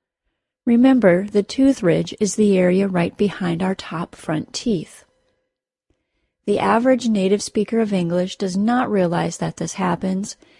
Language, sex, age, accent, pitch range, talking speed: English, female, 30-49, American, 180-220 Hz, 140 wpm